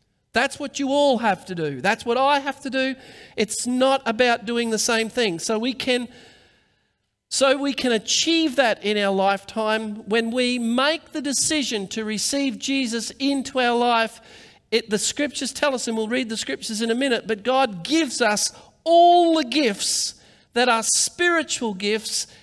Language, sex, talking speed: English, male, 175 wpm